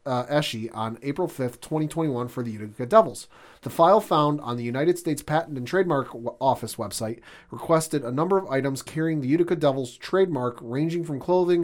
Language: English